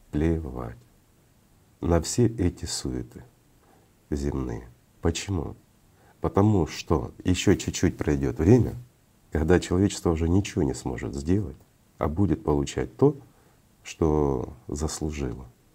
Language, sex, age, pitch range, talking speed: Russian, male, 50-69, 75-105 Hz, 100 wpm